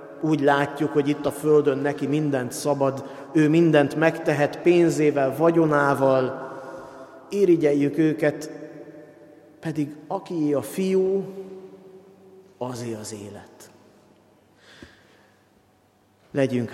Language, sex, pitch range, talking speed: Hungarian, male, 135-165 Hz, 85 wpm